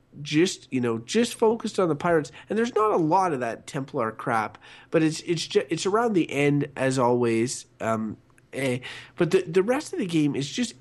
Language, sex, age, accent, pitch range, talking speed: English, male, 30-49, American, 125-165 Hz, 210 wpm